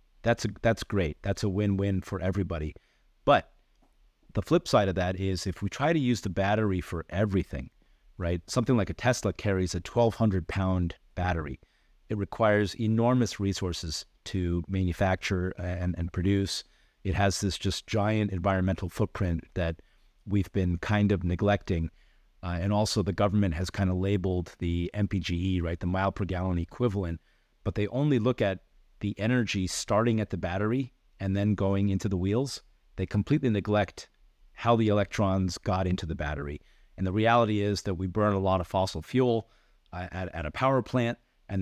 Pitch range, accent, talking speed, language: 90-105 Hz, American, 175 wpm, English